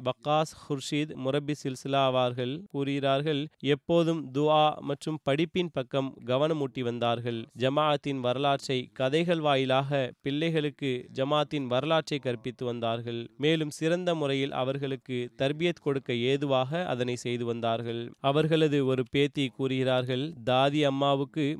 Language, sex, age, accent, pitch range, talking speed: Tamil, male, 20-39, native, 130-155 Hz, 105 wpm